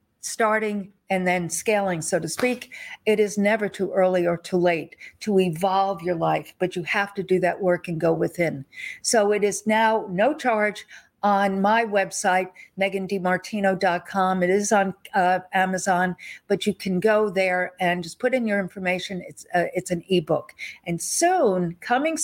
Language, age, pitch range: English, 50-69, 175-205 Hz